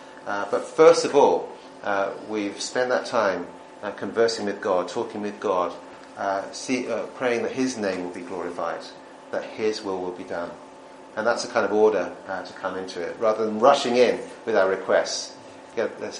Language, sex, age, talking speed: English, male, 40-59, 190 wpm